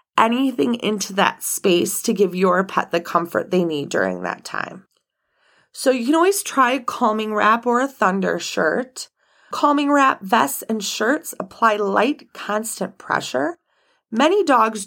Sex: female